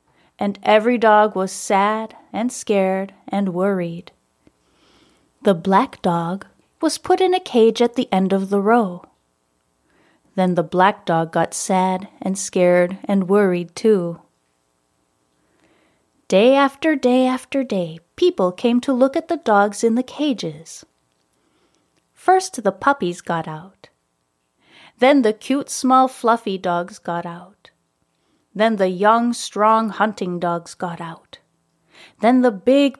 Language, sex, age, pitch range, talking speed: English, female, 30-49, 175-255 Hz, 135 wpm